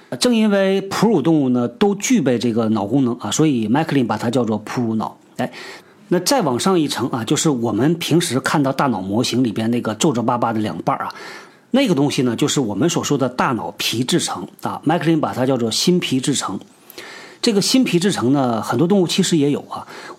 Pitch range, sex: 130-180 Hz, male